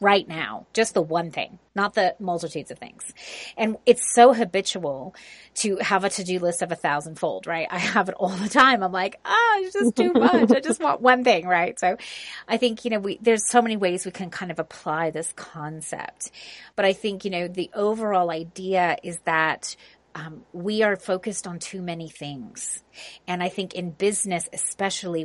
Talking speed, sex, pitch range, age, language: 205 wpm, female, 175-220 Hz, 30-49, English